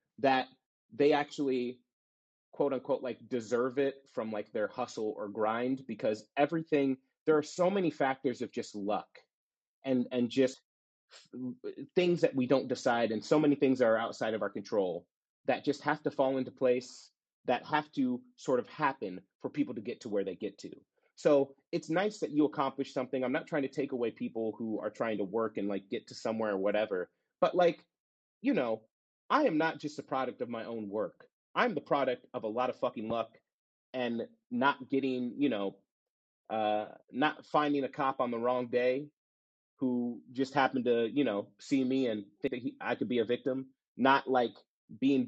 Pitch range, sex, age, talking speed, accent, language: 120-150 Hz, male, 30-49, 195 wpm, American, English